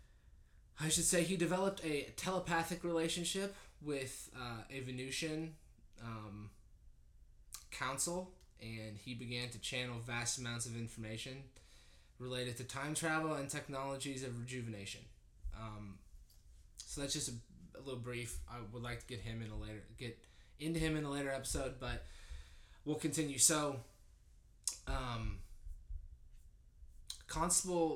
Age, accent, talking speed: 20-39, American, 130 wpm